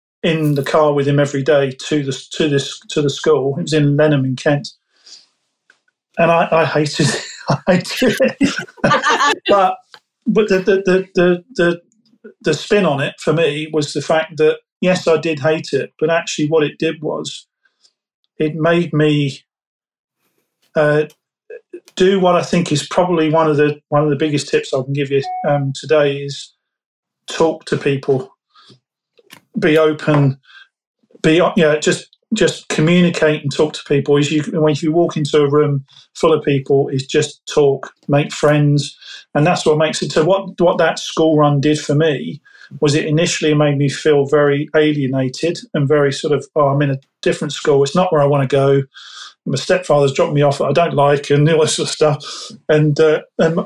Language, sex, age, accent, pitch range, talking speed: English, male, 40-59, British, 145-175 Hz, 185 wpm